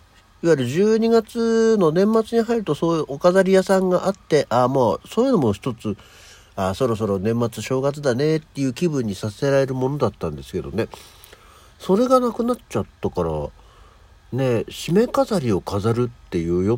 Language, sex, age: Japanese, male, 60-79